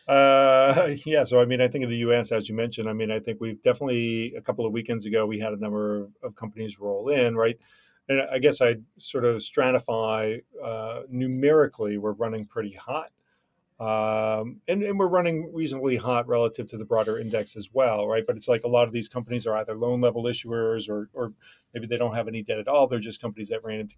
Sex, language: male, English